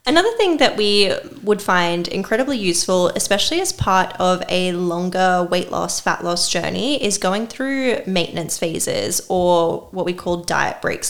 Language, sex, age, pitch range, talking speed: English, female, 10-29, 180-215 Hz, 160 wpm